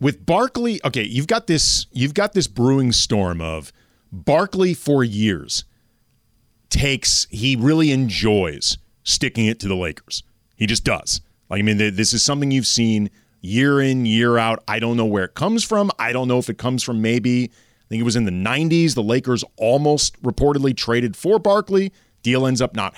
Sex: male